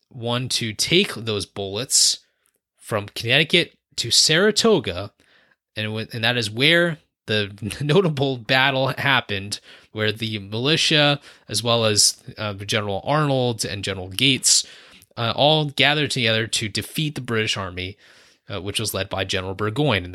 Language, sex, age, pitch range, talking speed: English, male, 20-39, 110-140 Hz, 145 wpm